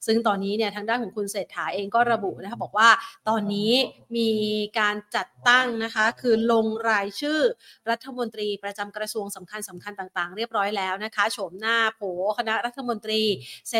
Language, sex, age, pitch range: Thai, female, 30-49, 205-250 Hz